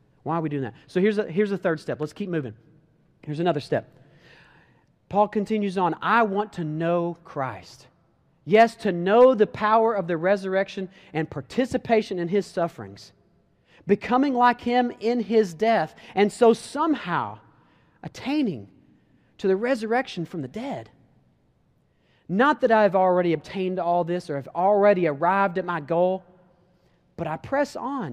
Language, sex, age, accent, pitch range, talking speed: English, male, 40-59, American, 160-230 Hz, 155 wpm